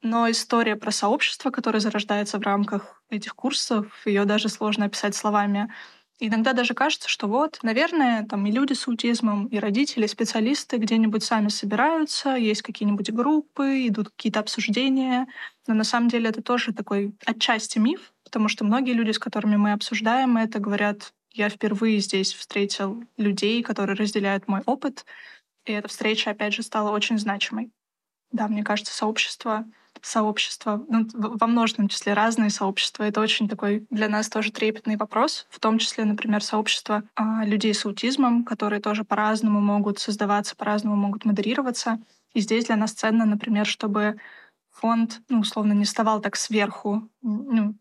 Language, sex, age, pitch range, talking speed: Russian, female, 20-39, 210-230 Hz, 155 wpm